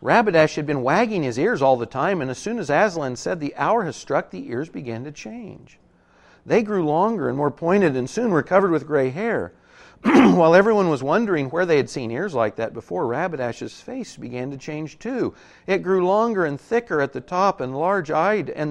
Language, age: English, 50-69